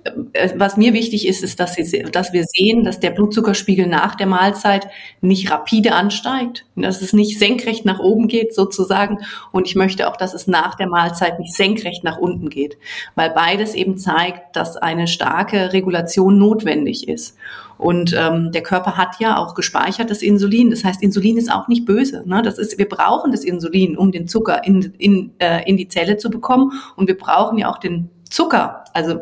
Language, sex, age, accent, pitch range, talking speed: German, female, 30-49, German, 175-210 Hz, 190 wpm